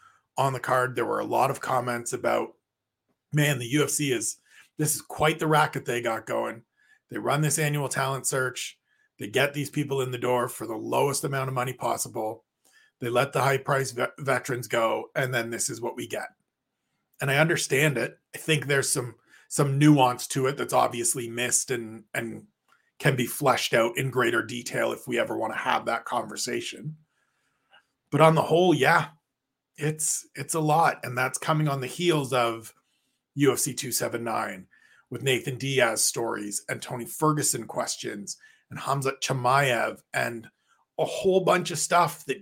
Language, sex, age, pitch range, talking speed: English, male, 40-59, 125-155 Hz, 175 wpm